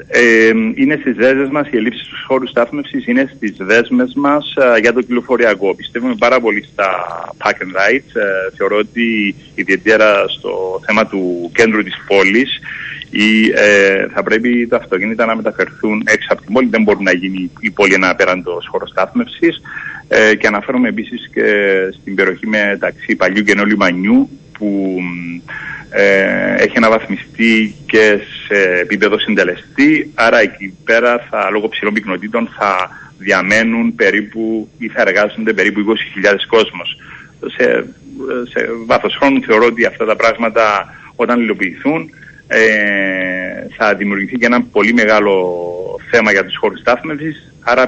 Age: 30-49